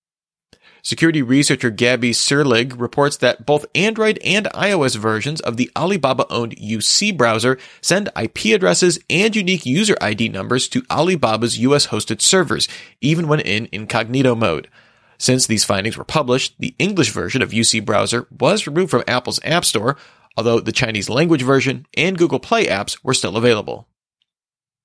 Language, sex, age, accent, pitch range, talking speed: English, male, 30-49, American, 115-150 Hz, 150 wpm